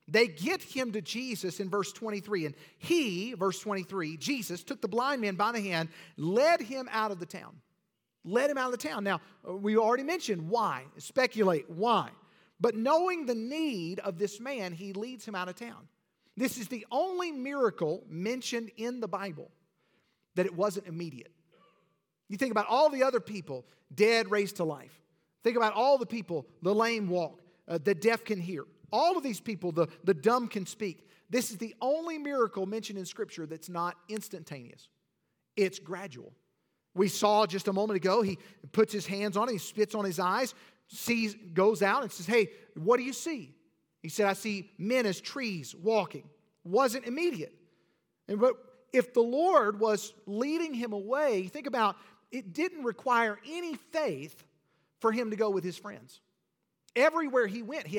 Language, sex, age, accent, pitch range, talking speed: English, male, 40-59, American, 185-245 Hz, 180 wpm